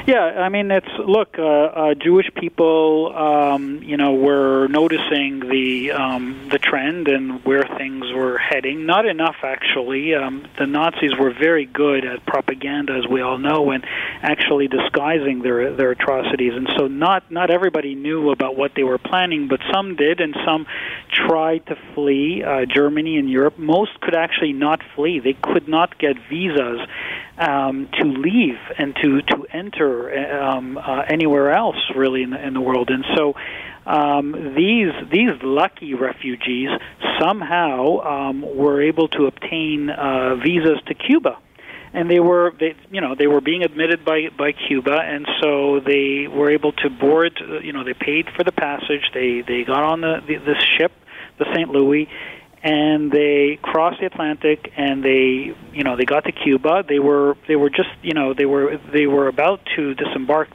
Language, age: English, 40-59